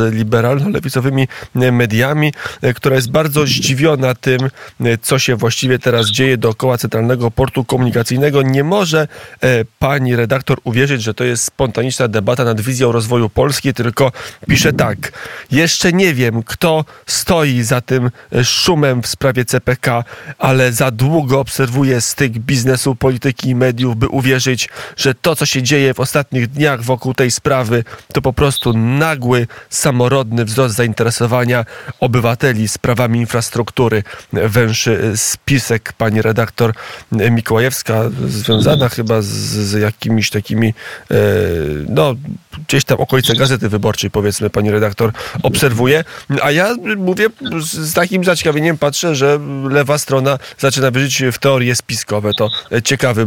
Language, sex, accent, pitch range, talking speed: Polish, male, native, 115-135 Hz, 130 wpm